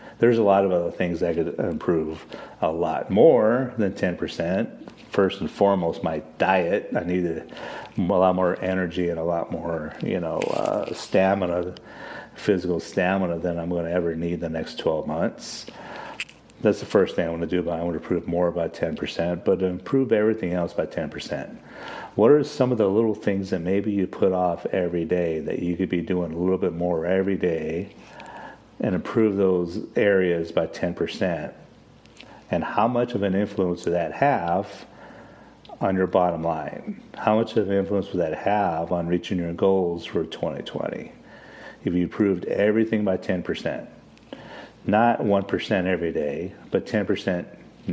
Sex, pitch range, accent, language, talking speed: male, 85-100 Hz, American, English, 175 wpm